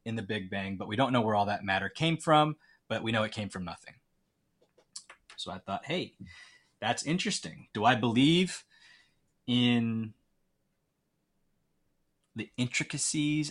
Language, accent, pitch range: English, American, 110-150 Hz